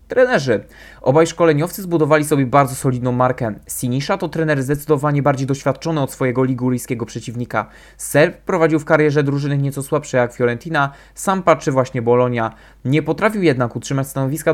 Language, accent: Polish, native